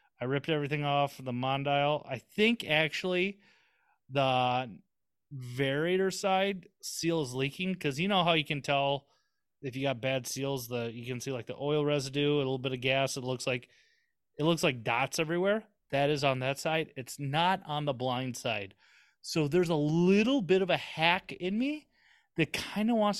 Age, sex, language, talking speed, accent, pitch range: 30-49, male, English, 190 wpm, American, 125-165 Hz